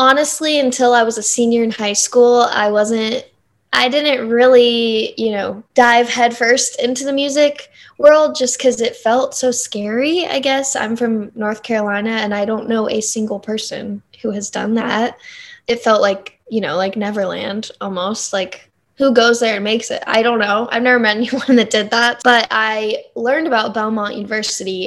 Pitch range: 215-260 Hz